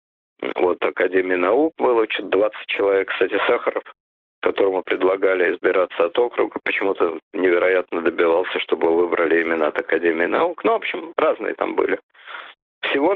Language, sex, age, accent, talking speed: Russian, male, 50-69, native, 135 wpm